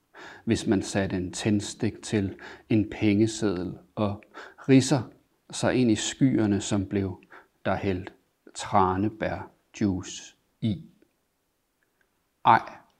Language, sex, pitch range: Danish, male, 105-115 Hz